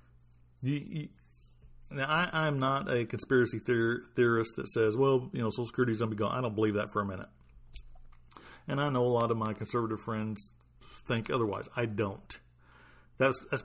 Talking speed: 195 wpm